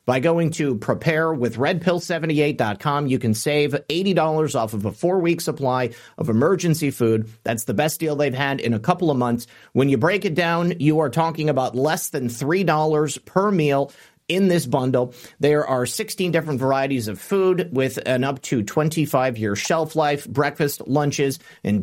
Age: 40-59